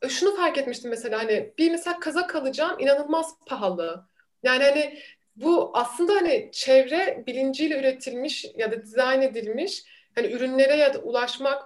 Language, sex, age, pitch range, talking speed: Turkish, female, 30-49, 260-335 Hz, 145 wpm